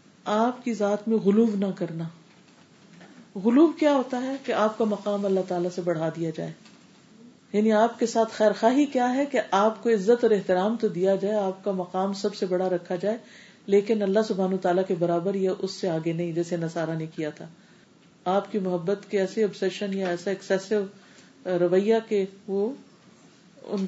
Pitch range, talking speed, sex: 180-210 Hz, 185 wpm, female